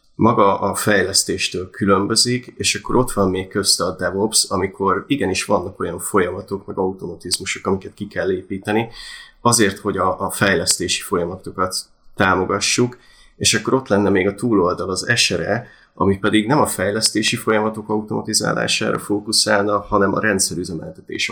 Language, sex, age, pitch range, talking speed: Hungarian, male, 30-49, 100-115 Hz, 140 wpm